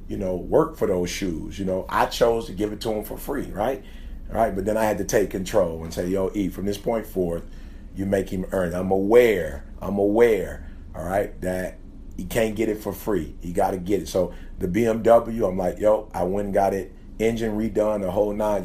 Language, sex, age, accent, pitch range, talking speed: English, male, 40-59, American, 90-105 Hz, 240 wpm